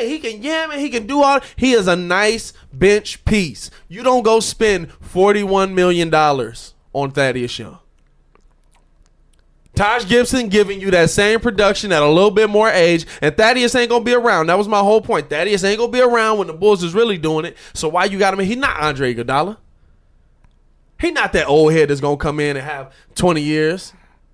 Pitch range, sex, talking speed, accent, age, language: 145-215 Hz, male, 205 wpm, American, 20-39, English